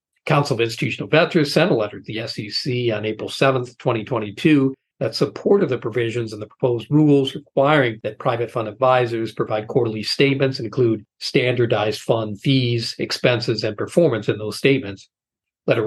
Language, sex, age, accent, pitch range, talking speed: English, male, 50-69, American, 115-150 Hz, 160 wpm